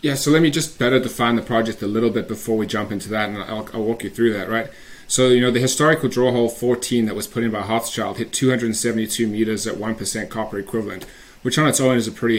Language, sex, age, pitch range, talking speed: English, male, 30-49, 110-125 Hz, 255 wpm